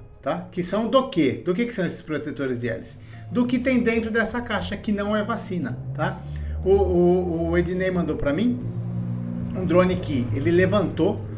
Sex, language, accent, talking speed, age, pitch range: male, Portuguese, Brazilian, 190 wpm, 50-69, 135-200 Hz